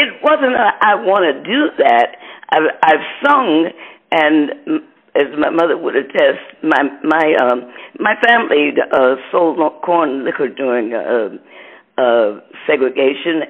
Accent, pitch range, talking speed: American, 135-205 Hz, 130 wpm